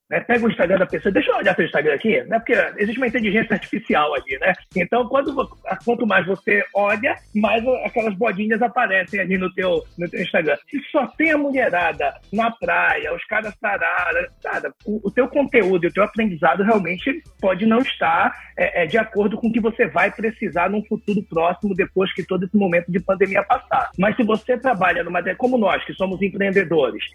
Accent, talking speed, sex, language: Brazilian, 200 wpm, male, Portuguese